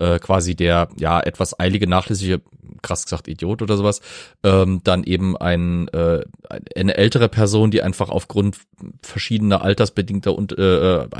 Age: 30-49